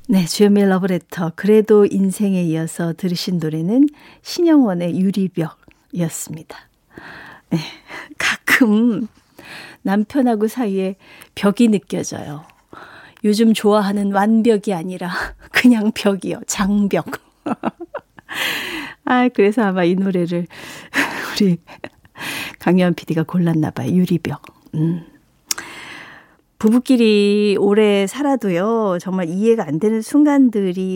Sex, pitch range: female, 180-245 Hz